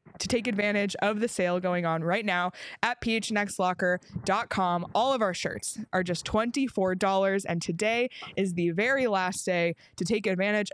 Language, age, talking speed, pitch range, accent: English, 20-39, 160 wpm, 185-240 Hz, American